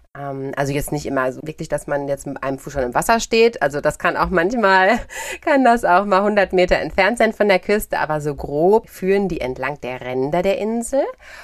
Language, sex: German, female